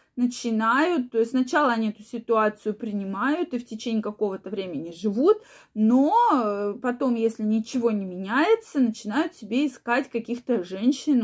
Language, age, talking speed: Russian, 20-39, 135 wpm